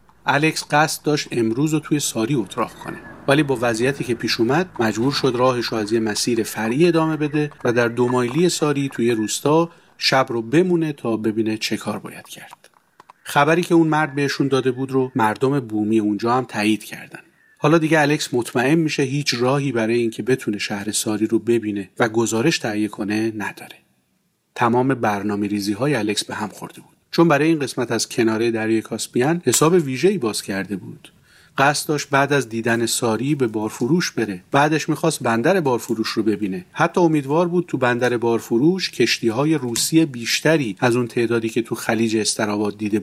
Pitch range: 110-150 Hz